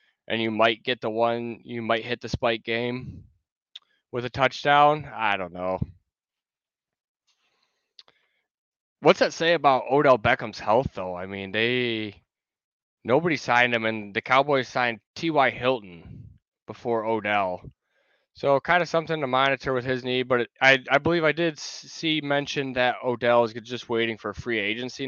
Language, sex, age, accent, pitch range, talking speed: English, male, 20-39, American, 100-130 Hz, 160 wpm